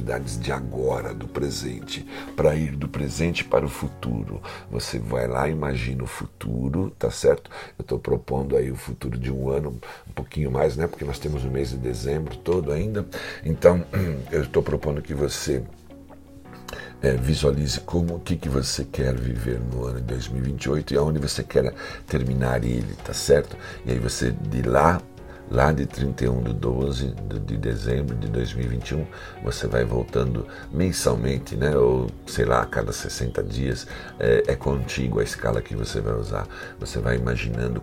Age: 60-79